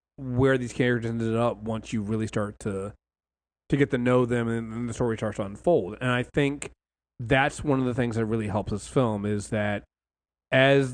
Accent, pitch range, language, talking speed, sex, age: American, 105-135 Hz, English, 210 wpm, male, 30-49